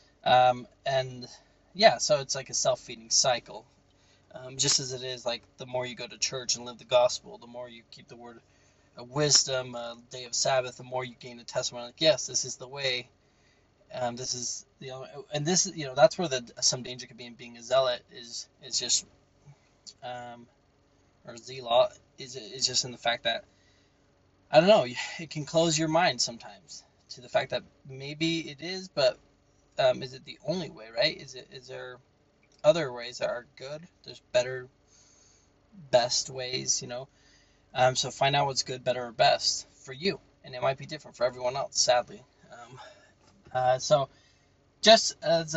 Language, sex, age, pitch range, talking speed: English, male, 20-39, 125-150 Hz, 195 wpm